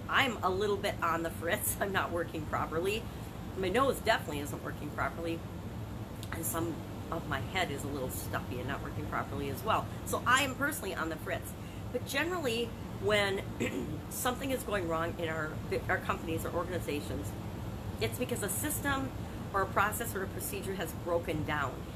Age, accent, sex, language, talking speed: 40-59, American, female, English, 180 wpm